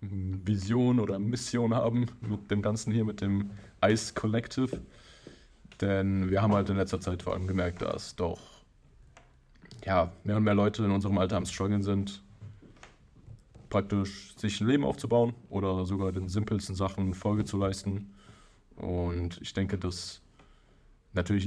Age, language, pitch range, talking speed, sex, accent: 20-39, German, 95-105 Hz, 145 wpm, male, German